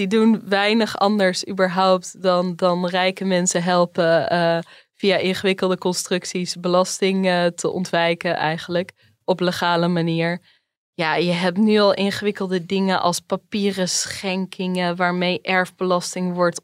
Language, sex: Dutch, female